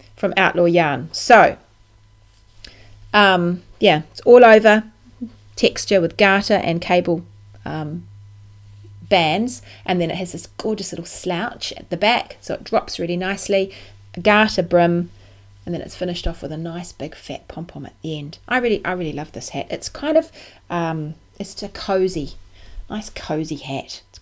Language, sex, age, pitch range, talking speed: English, female, 30-49, 140-190 Hz, 160 wpm